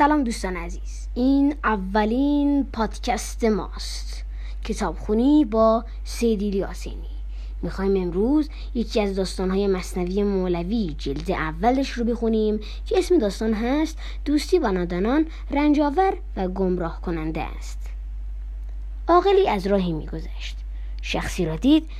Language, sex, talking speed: Persian, female, 115 wpm